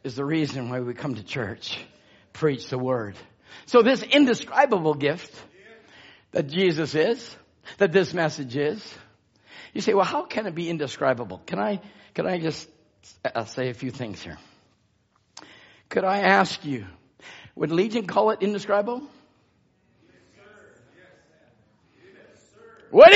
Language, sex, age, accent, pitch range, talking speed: English, male, 50-69, American, 180-305 Hz, 130 wpm